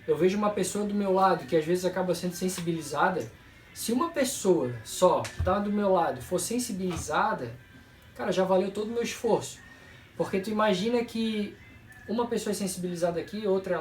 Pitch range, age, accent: 155-205 Hz, 20-39, Brazilian